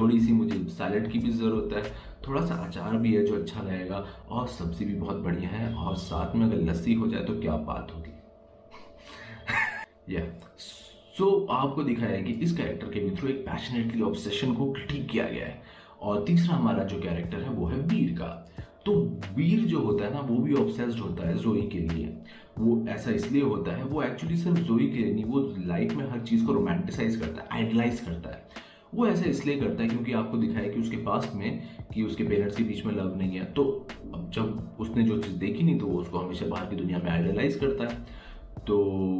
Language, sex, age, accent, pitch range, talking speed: Hindi, male, 30-49, native, 95-120 Hz, 195 wpm